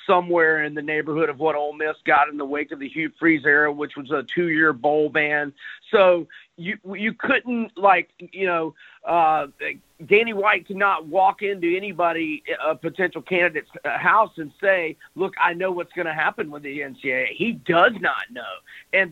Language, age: English, 40-59